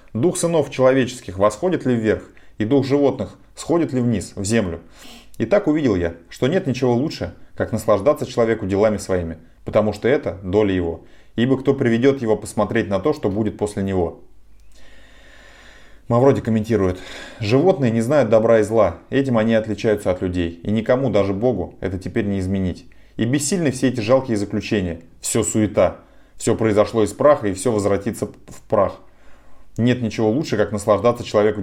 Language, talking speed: Russian, 165 wpm